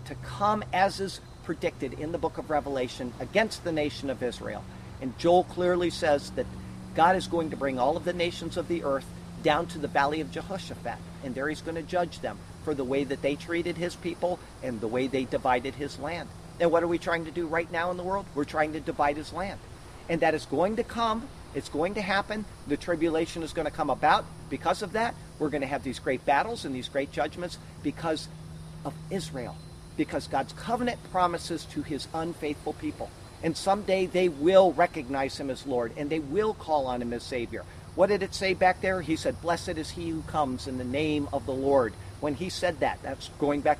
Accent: American